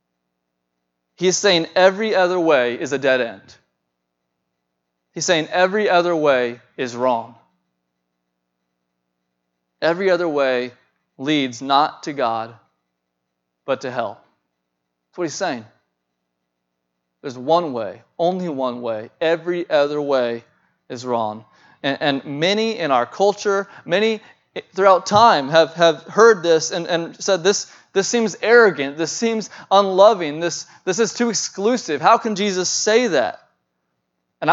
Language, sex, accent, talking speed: English, male, American, 130 wpm